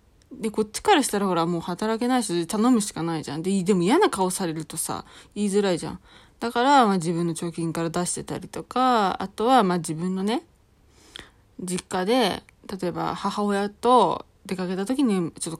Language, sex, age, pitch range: Japanese, female, 20-39, 175-255 Hz